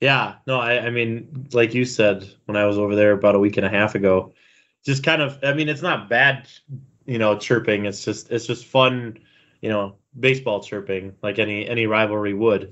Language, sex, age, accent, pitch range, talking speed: English, male, 20-39, American, 105-125 Hz, 210 wpm